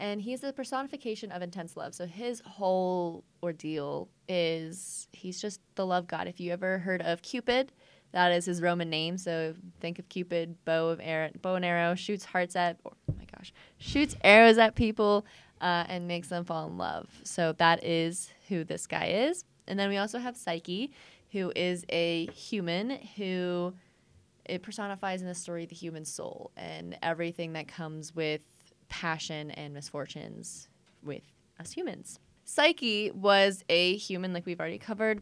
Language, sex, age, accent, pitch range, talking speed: English, female, 20-39, American, 165-205 Hz, 165 wpm